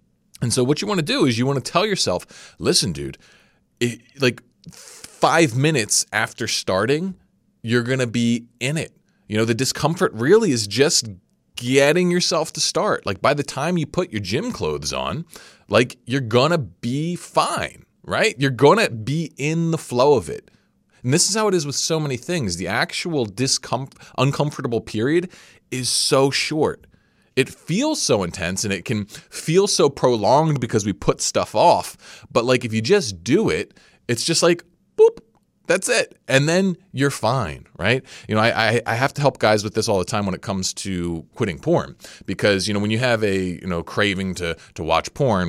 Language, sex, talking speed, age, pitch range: English, male, 195 wpm, 30-49, 95-145 Hz